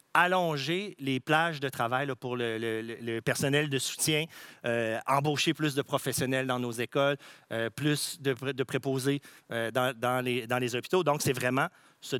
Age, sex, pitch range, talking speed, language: 40-59, male, 125-160 Hz, 180 wpm, French